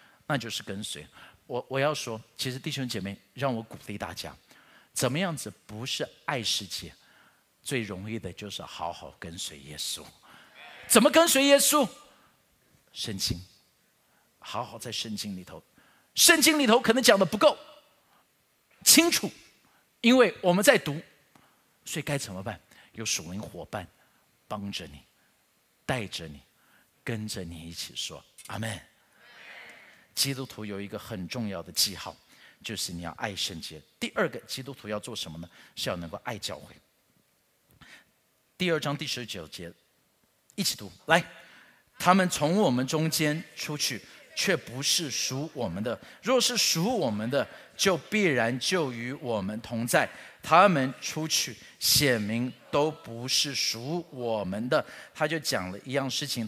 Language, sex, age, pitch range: Chinese, male, 50-69, 105-155 Hz